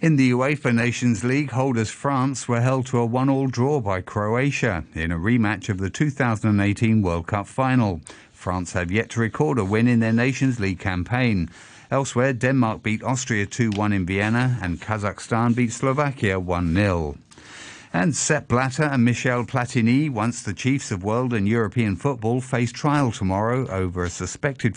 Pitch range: 100-130 Hz